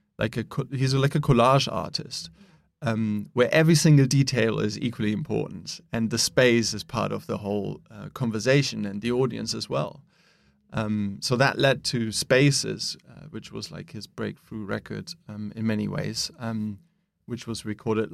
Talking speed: 170 wpm